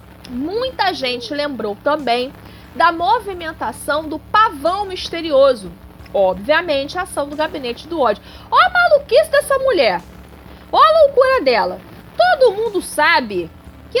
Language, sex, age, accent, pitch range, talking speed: Portuguese, female, 30-49, Brazilian, 275-395 Hz, 125 wpm